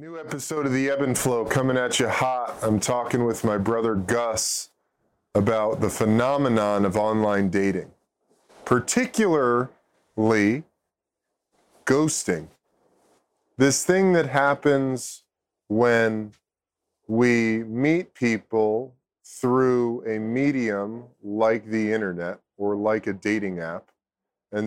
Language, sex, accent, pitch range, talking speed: English, male, American, 100-125 Hz, 110 wpm